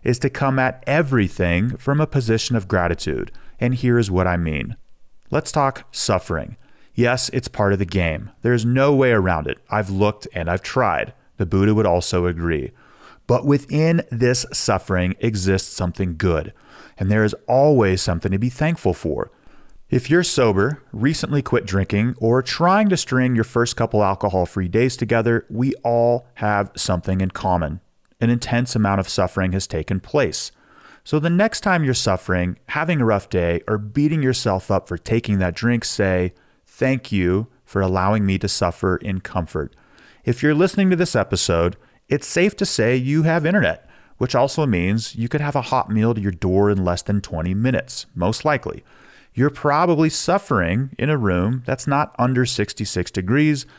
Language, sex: English, male